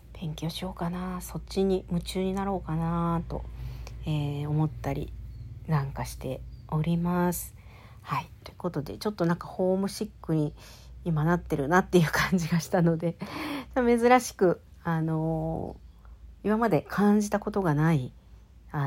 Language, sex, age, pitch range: Japanese, female, 50-69, 145-195 Hz